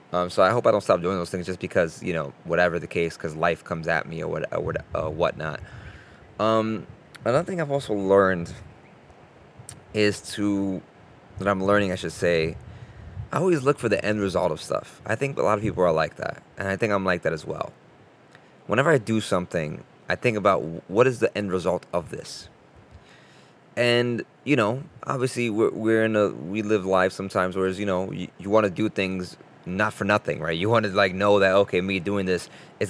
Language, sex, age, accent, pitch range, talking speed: English, male, 20-39, American, 95-110 Hz, 210 wpm